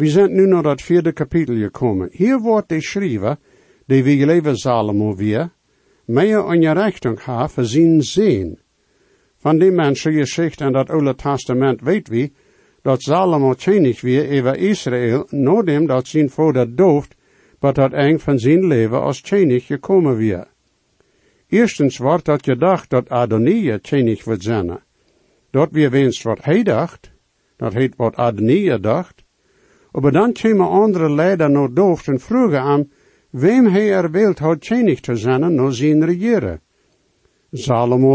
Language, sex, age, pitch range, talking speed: English, male, 60-79, 125-175 Hz, 155 wpm